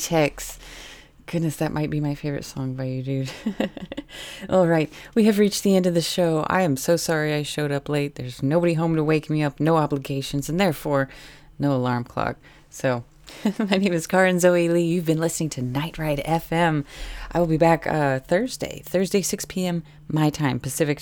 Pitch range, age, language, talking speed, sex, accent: 140-180 Hz, 30-49, English, 195 wpm, female, American